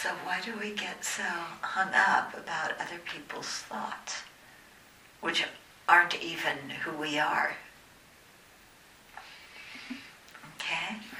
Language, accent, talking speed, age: English, American, 100 wpm, 60-79